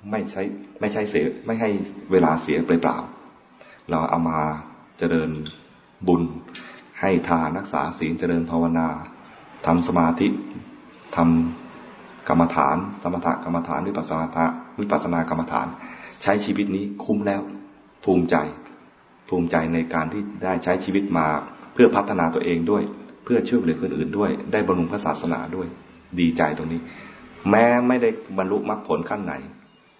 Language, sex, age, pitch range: English, male, 20-39, 80-95 Hz